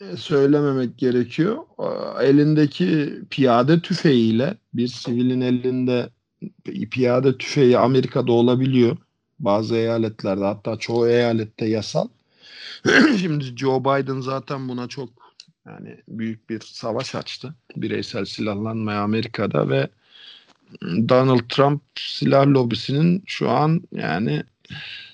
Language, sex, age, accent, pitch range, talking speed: Turkish, male, 50-69, native, 120-165 Hz, 95 wpm